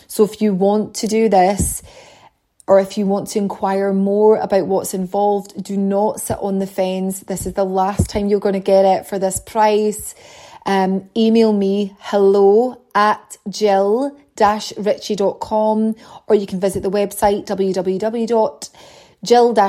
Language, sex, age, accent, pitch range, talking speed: English, female, 30-49, British, 195-215 Hz, 150 wpm